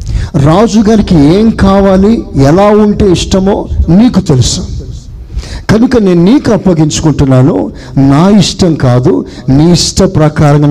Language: Telugu